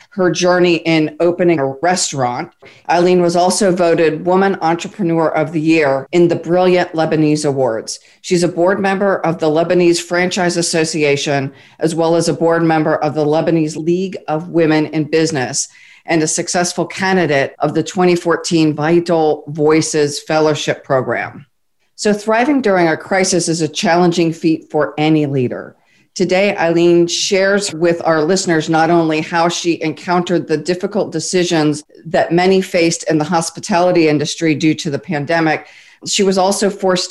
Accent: American